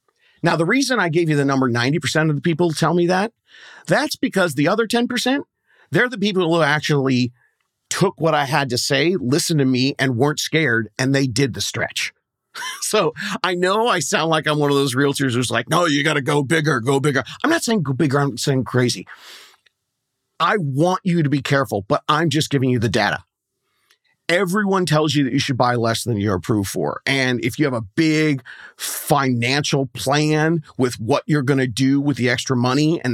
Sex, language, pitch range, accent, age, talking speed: male, English, 130-160 Hz, American, 40-59, 210 wpm